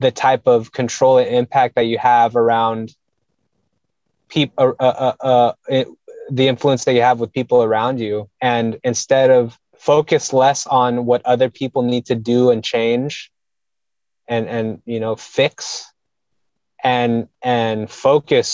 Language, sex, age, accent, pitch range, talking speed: English, male, 20-39, American, 115-150 Hz, 150 wpm